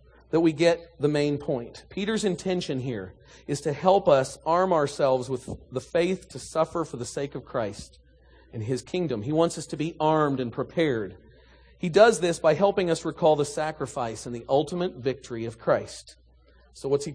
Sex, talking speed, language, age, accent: male, 190 wpm, English, 40-59, American